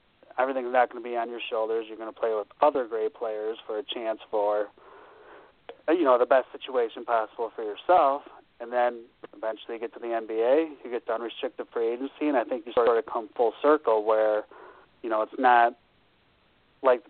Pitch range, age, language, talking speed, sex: 110-130 Hz, 30-49, English, 200 wpm, male